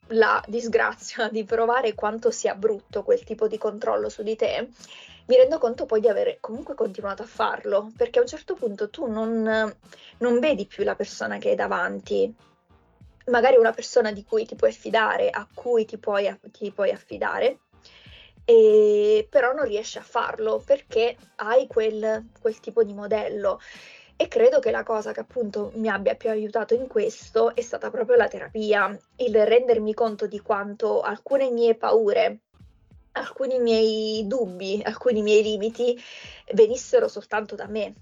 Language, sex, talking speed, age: Italian, female, 160 wpm, 20-39